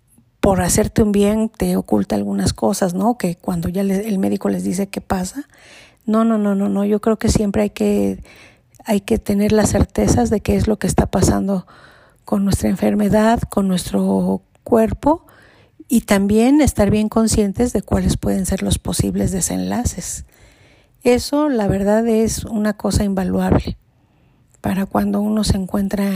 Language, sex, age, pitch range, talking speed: Spanish, female, 50-69, 170-215 Hz, 160 wpm